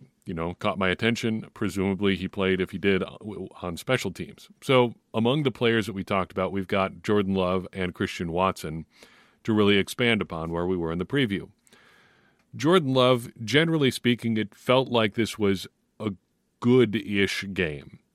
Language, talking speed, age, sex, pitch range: English, 170 wpm, 40-59, male, 95-115 Hz